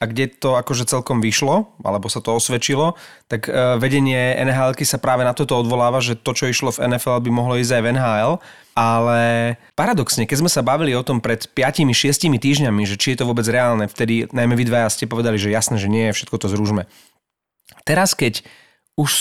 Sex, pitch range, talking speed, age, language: male, 115-140 Hz, 195 wpm, 30-49, Slovak